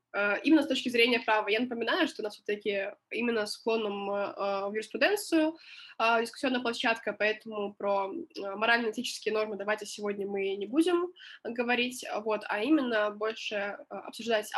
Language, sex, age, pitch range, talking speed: Russian, female, 20-39, 210-270 Hz, 135 wpm